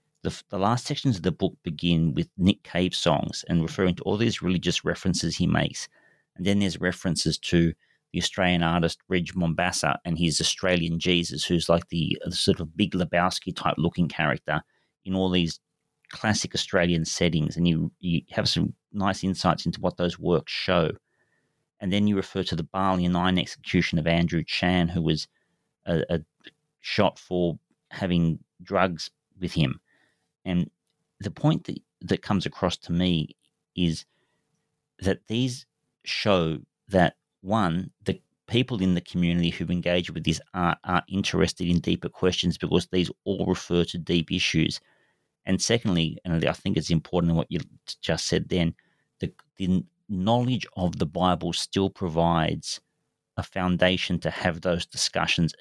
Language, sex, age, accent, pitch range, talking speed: English, male, 40-59, Australian, 85-95 Hz, 160 wpm